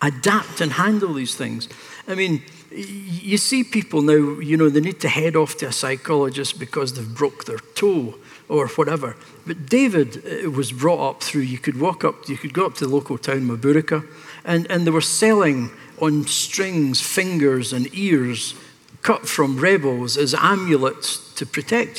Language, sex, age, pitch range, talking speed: English, male, 60-79, 135-160 Hz, 175 wpm